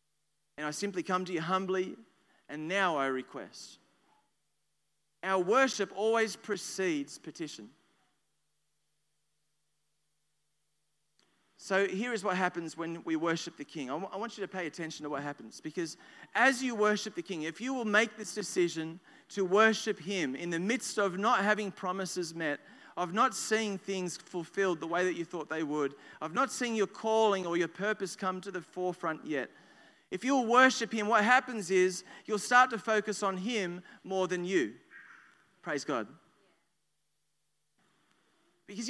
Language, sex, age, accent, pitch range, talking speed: English, male, 40-59, Australian, 180-230 Hz, 155 wpm